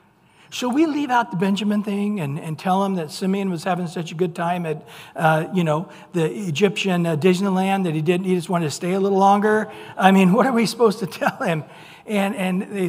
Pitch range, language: 155-205 Hz, English